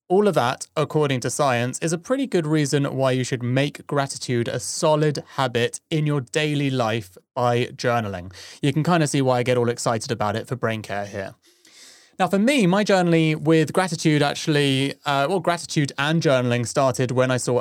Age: 30-49